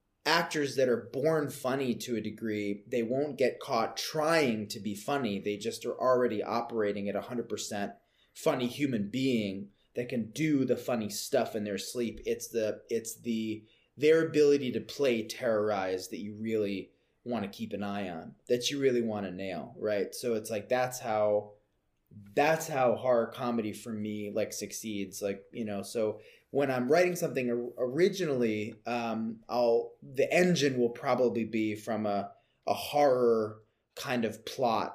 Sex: male